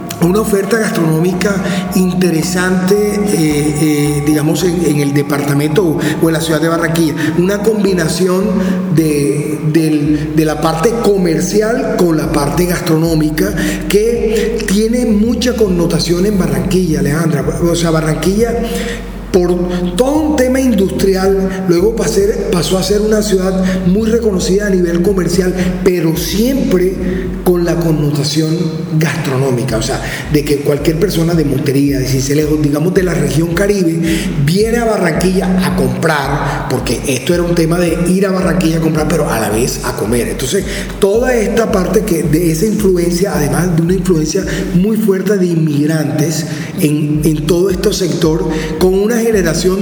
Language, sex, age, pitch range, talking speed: Spanish, male, 40-59, 155-195 Hz, 150 wpm